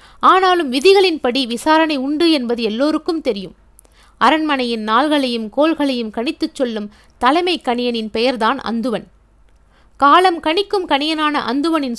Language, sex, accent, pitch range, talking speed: Tamil, female, native, 245-320 Hz, 100 wpm